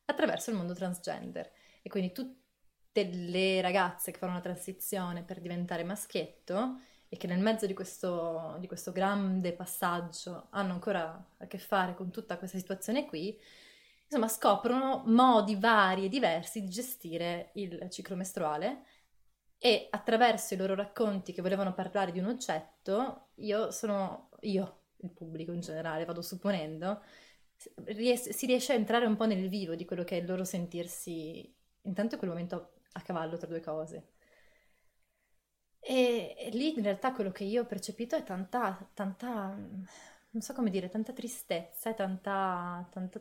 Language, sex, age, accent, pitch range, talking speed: Italian, female, 20-39, native, 180-220 Hz, 155 wpm